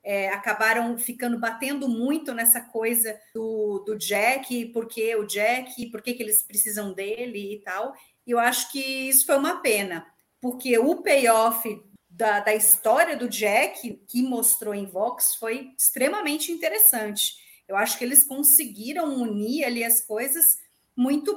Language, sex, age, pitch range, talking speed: Portuguese, female, 30-49, 215-265 Hz, 150 wpm